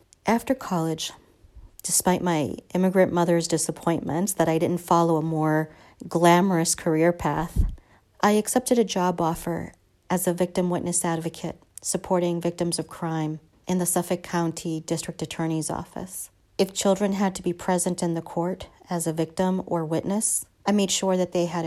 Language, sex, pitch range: English, female, 160-180 Hz